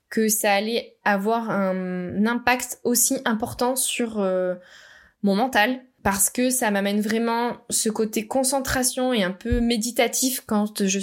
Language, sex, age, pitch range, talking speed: French, female, 20-39, 195-245 Hz, 140 wpm